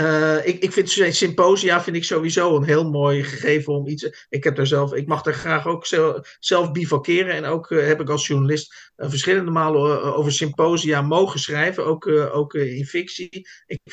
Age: 50-69